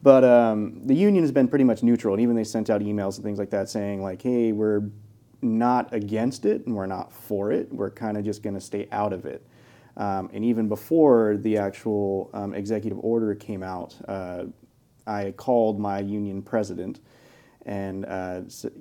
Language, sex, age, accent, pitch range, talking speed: English, male, 30-49, American, 100-115 Hz, 190 wpm